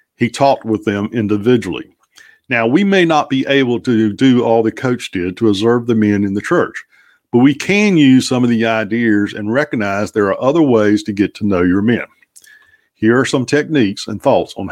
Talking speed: 210 wpm